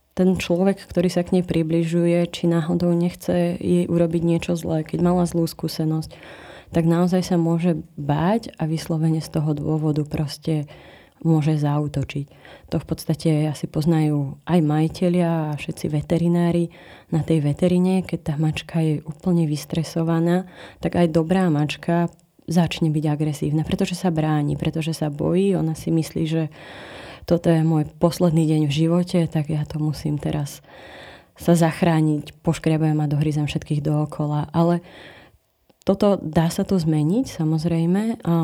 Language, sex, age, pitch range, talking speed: Slovak, female, 20-39, 155-175 Hz, 145 wpm